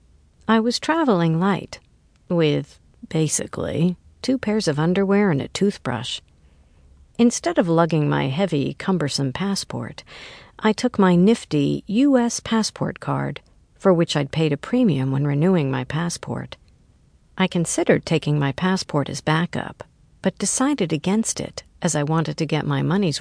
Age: 50-69